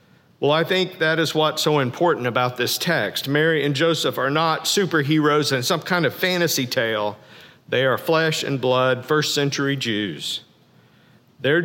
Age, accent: 50-69, American